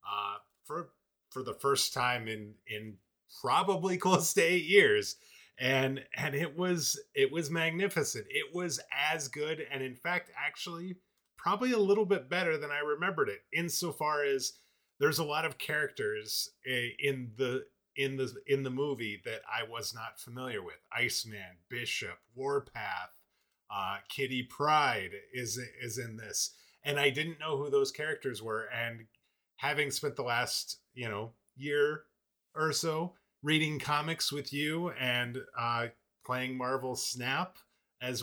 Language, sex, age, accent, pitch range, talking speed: English, male, 30-49, American, 125-165 Hz, 150 wpm